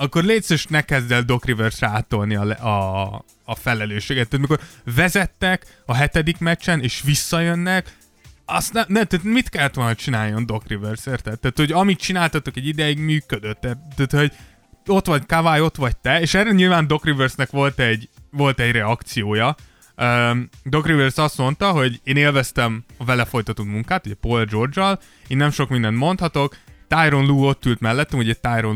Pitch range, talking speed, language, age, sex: 115-150 Hz, 175 wpm, Hungarian, 20-39, male